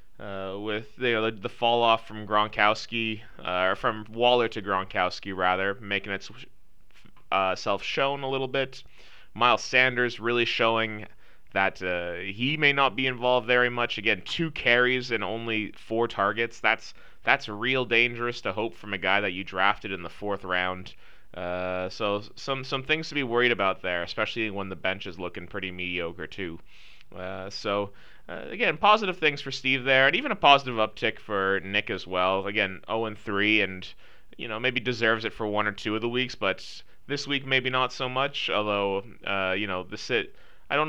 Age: 20-39